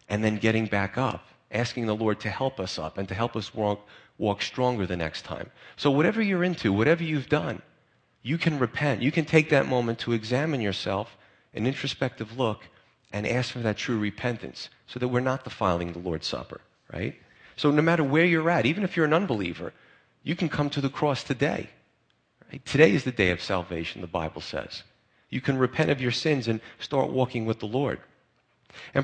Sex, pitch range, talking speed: male, 100-135 Hz, 205 wpm